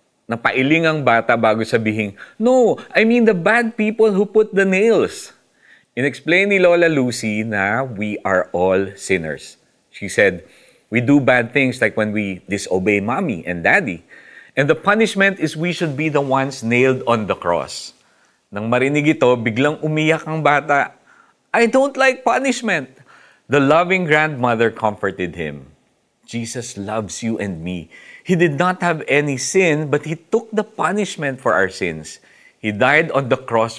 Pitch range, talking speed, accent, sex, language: 105-165 Hz, 160 wpm, native, male, Filipino